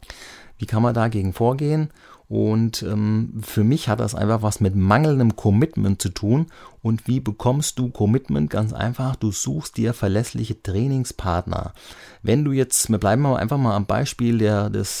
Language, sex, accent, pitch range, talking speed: German, male, German, 105-125 Hz, 160 wpm